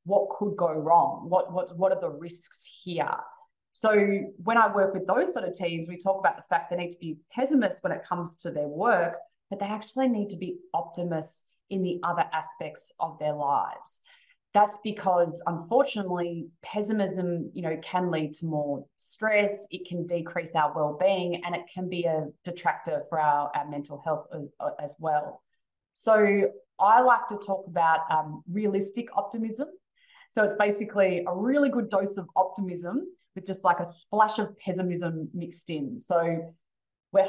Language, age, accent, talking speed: English, 20-39, Australian, 175 wpm